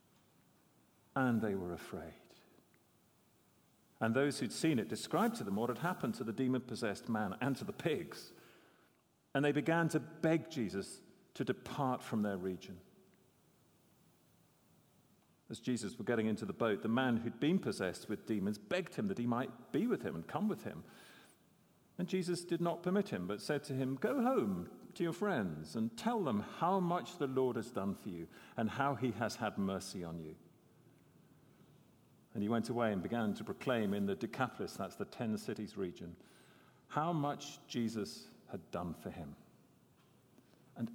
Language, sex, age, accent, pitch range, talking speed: English, male, 50-69, British, 115-170 Hz, 175 wpm